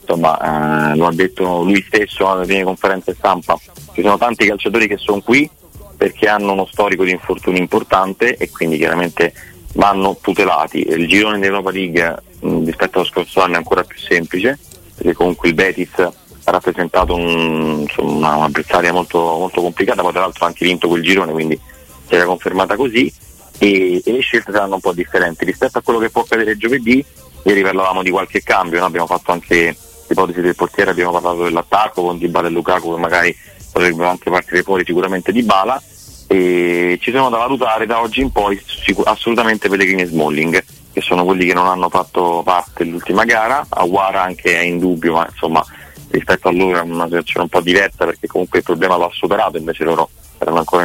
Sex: male